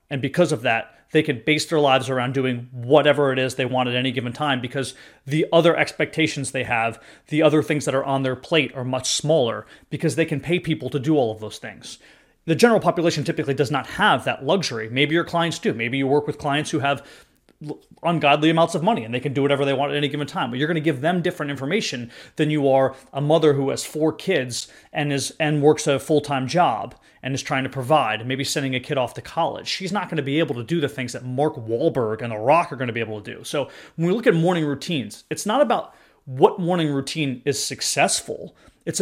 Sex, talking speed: male, 240 wpm